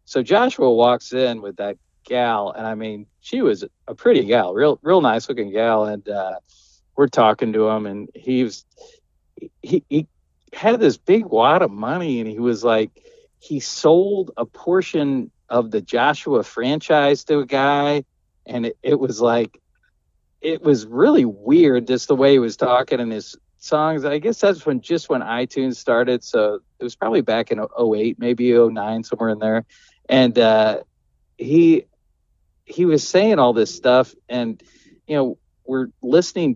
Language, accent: English, American